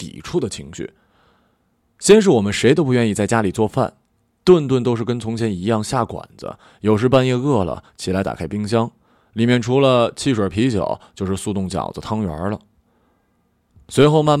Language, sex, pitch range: Chinese, male, 95-130 Hz